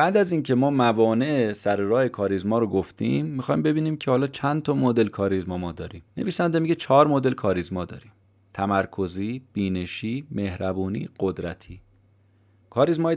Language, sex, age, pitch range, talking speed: Persian, male, 30-49, 95-115 Hz, 135 wpm